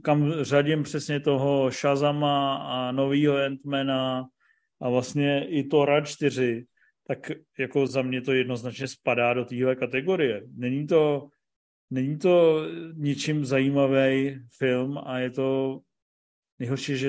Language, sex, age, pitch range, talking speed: Czech, male, 40-59, 135-150 Hz, 125 wpm